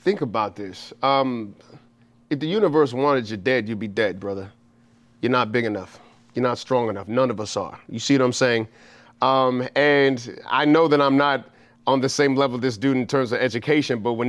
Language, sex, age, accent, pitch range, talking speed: English, male, 30-49, American, 120-145 Hz, 210 wpm